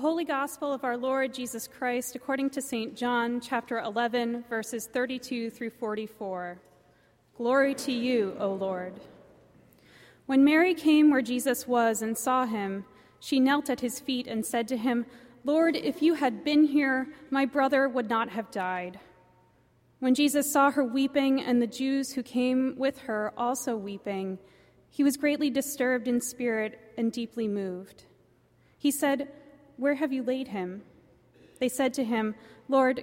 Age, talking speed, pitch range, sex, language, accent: 30-49, 160 wpm, 220-280 Hz, female, English, American